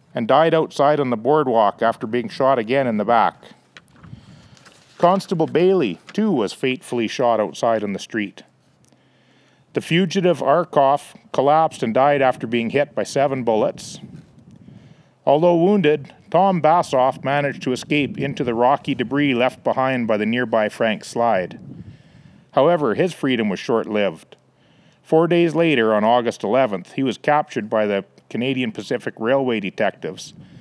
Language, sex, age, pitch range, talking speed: English, male, 40-59, 115-150 Hz, 145 wpm